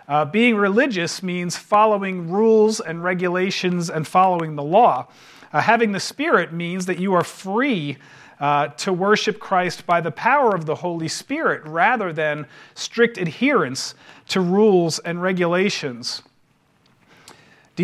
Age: 40-59